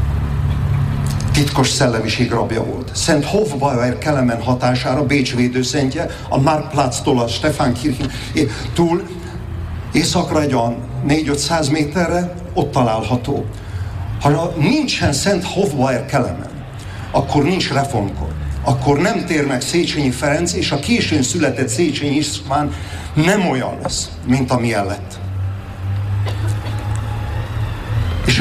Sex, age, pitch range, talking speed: male, 50-69, 105-145 Hz, 100 wpm